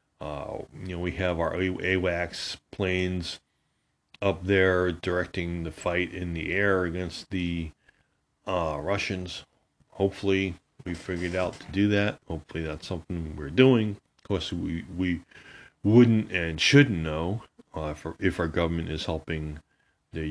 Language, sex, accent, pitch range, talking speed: English, male, American, 80-100 Hz, 145 wpm